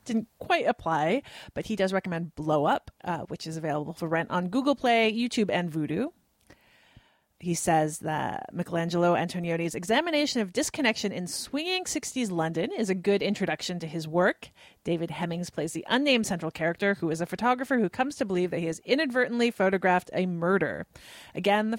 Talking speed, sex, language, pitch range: 175 wpm, female, English, 170-235 Hz